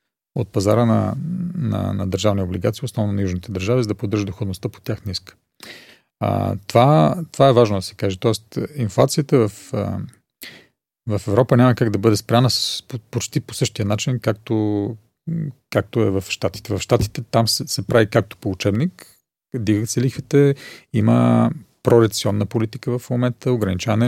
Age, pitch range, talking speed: 40-59, 100-125 Hz, 165 wpm